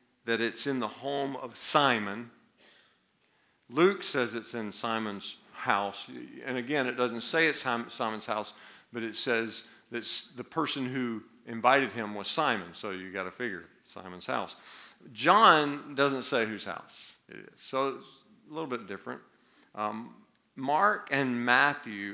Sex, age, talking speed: male, 50-69, 150 wpm